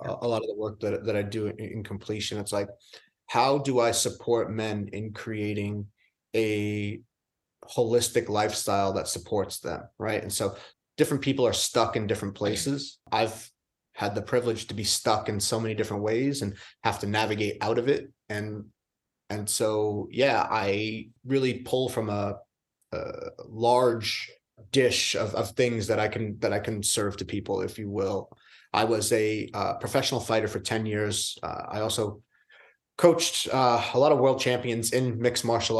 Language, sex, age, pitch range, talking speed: English, male, 30-49, 105-120 Hz, 175 wpm